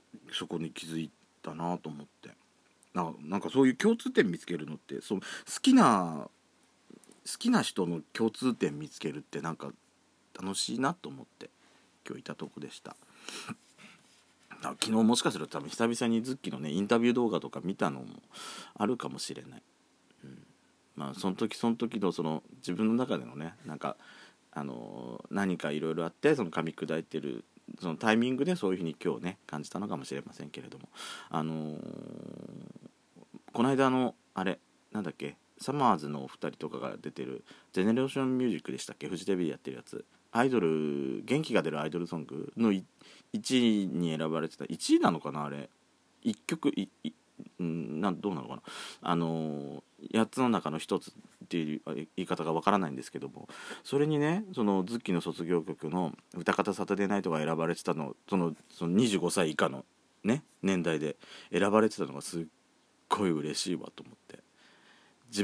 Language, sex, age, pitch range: Japanese, male, 40-59, 80-115 Hz